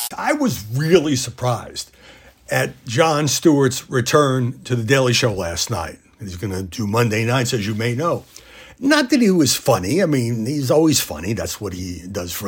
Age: 60-79